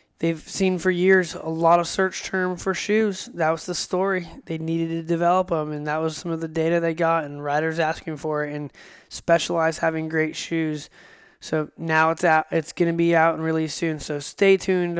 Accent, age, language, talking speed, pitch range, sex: American, 20-39, English, 215 wpm, 155-175 Hz, male